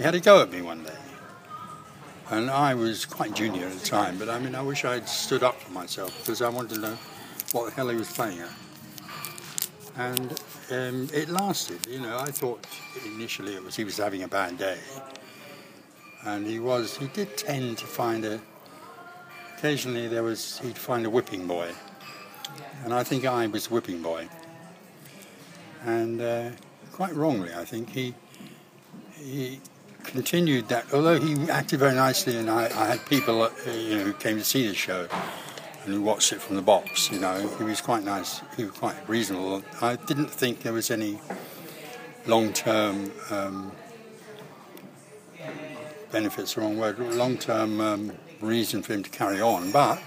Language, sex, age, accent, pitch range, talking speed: English, male, 60-79, British, 110-145 Hz, 175 wpm